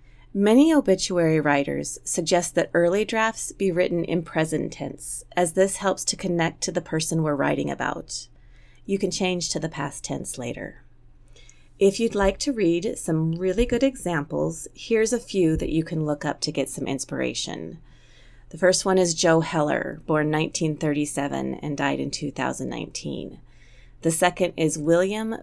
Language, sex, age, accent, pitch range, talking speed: English, female, 30-49, American, 140-190 Hz, 160 wpm